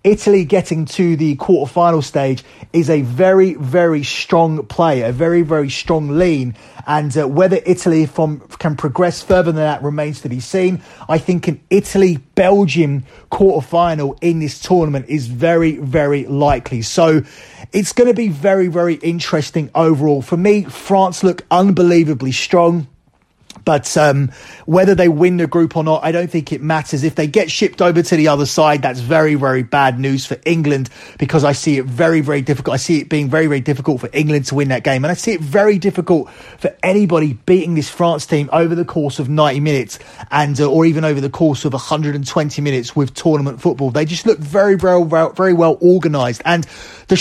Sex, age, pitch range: male, 30-49, 145-175 Hz